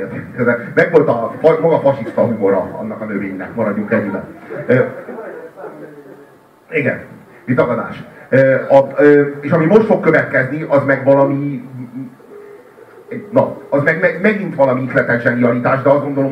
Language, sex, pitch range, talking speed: Hungarian, male, 110-145 Hz, 125 wpm